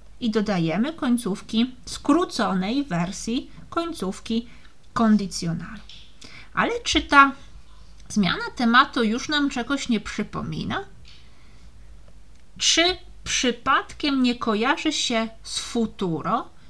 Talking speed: 85 wpm